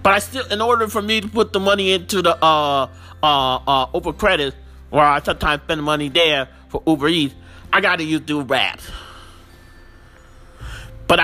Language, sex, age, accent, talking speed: English, male, 40-59, American, 175 wpm